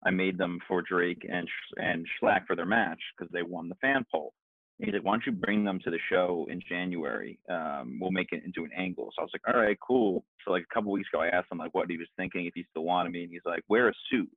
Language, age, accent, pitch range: English, 30-49, American, 90-100 Hz